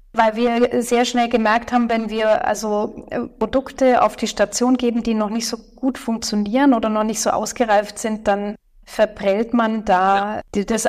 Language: German